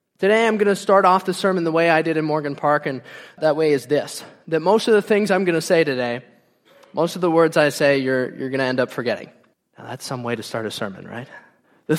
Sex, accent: male, American